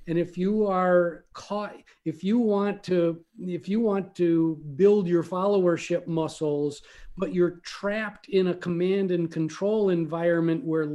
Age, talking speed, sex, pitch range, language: 50-69, 150 wpm, male, 160-190 Hz, English